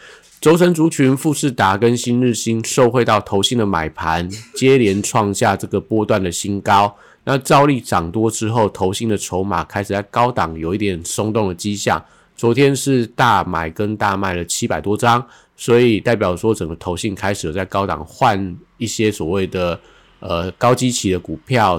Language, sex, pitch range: Chinese, male, 95-115 Hz